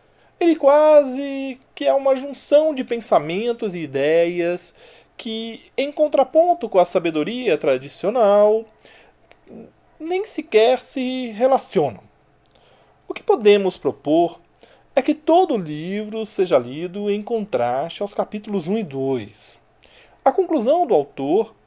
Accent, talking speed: Brazilian, 120 wpm